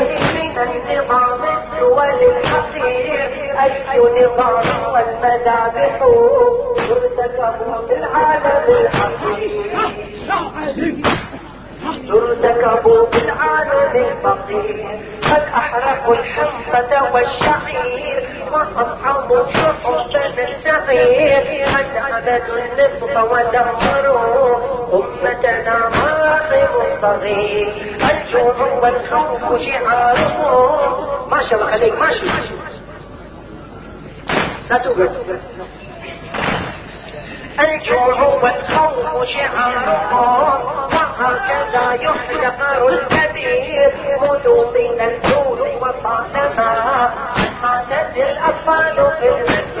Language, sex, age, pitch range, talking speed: Arabic, male, 40-59, 240-315 Hz, 45 wpm